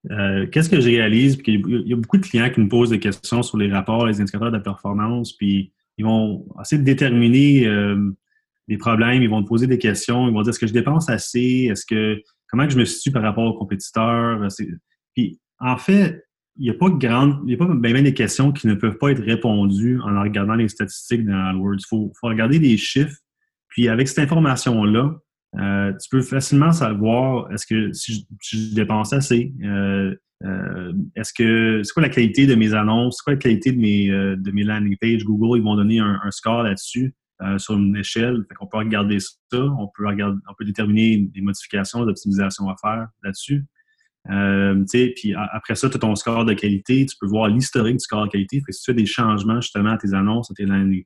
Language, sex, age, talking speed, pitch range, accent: French, male, 30-49, 220 wpm, 105-125 Hz, Canadian